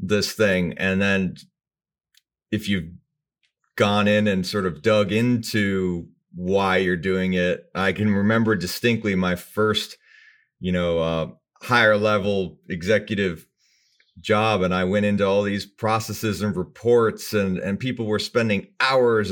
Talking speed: 140 wpm